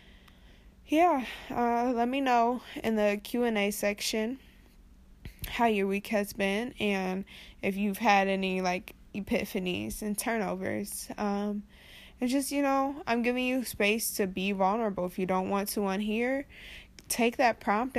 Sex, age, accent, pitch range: female, 20-39, American, 190-230 Hz